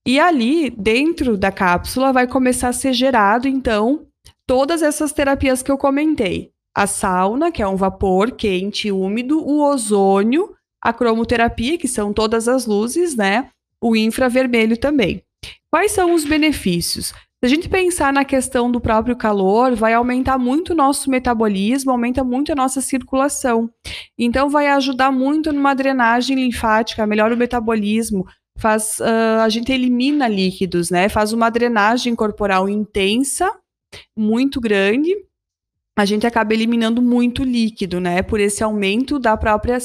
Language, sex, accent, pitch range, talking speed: Portuguese, female, Brazilian, 215-265 Hz, 150 wpm